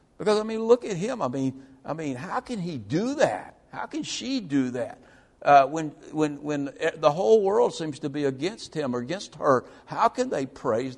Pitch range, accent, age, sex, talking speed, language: 120-160 Hz, American, 60-79, male, 215 wpm, English